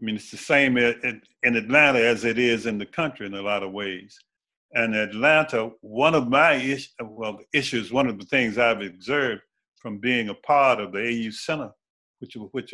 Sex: male